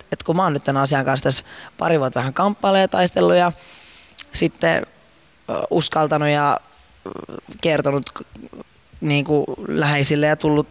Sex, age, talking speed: male, 20-39, 125 wpm